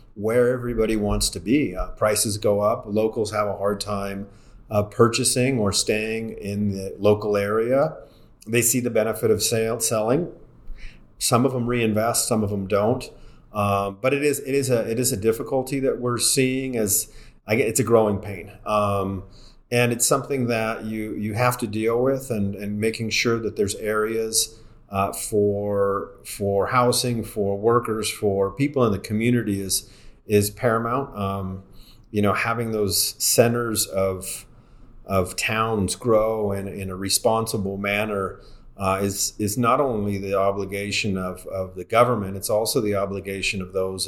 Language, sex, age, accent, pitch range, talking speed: English, male, 40-59, American, 100-115 Hz, 165 wpm